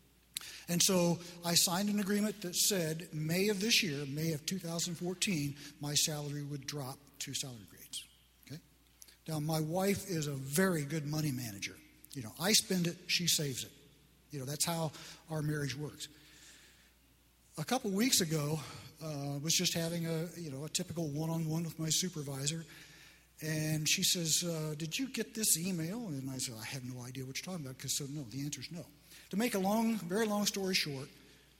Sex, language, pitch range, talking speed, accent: male, English, 140-175 Hz, 190 wpm, American